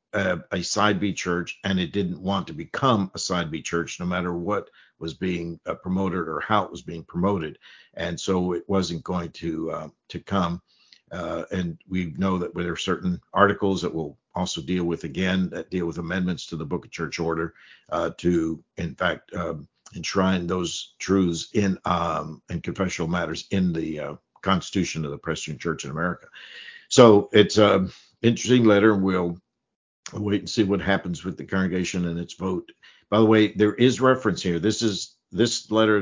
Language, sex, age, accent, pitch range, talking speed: English, male, 50-69, American, 85-100 Hz, 190 wpm